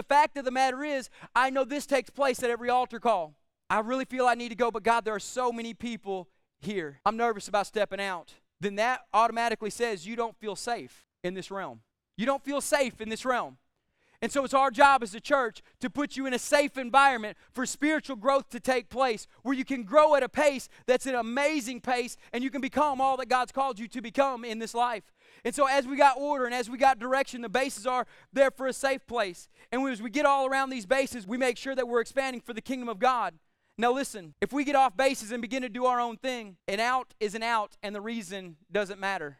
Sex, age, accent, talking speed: male, 30-49, American, 245 wpm